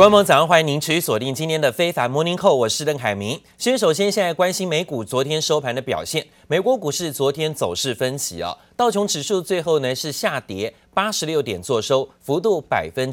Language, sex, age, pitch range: Chinese, male, 30-49, 130-175 Hz